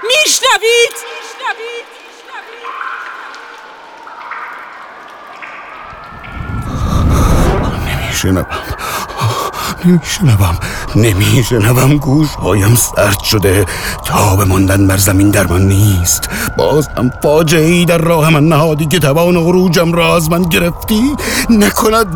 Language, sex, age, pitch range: Persian, male, 60-79, 110-180 Hz